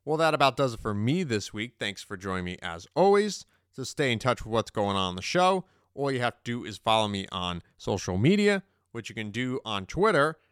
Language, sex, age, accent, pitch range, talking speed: English, male, 30-49, American, 105-155 Hz, 245 wpm